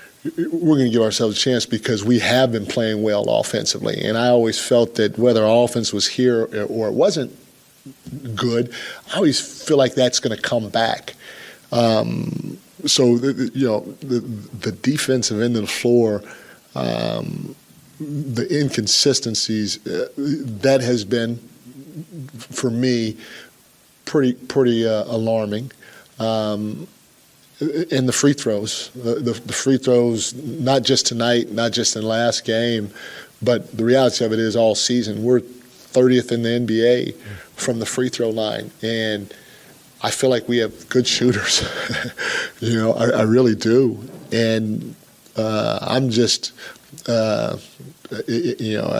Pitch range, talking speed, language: 110-125 Hz, 150 wpm, English